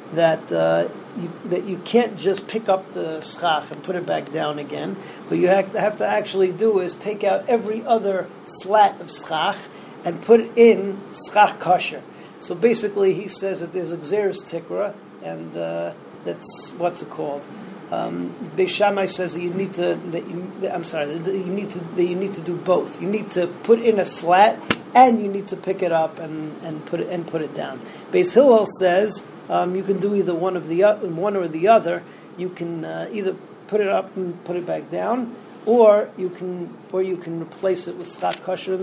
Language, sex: English, male